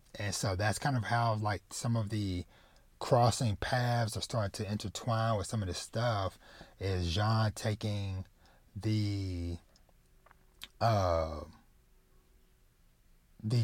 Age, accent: 30-49, American